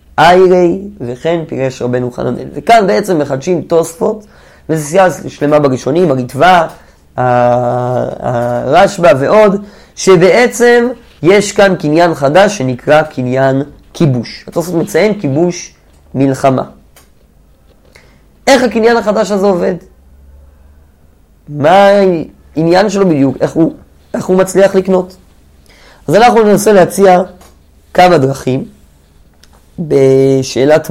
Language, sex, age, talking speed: Hebrew, male, 30-49, 95 wpm